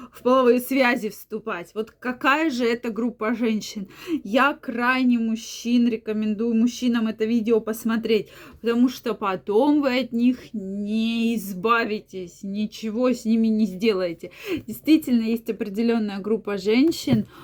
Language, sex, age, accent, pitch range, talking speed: Russian, female, 20-39, native, 215-250 Hz, 125 wpm